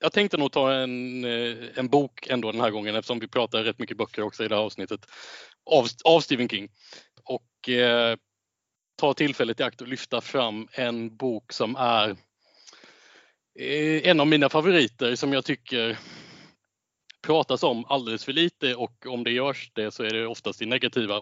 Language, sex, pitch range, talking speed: Swedish, male, 115-140 Hz, 180 wpm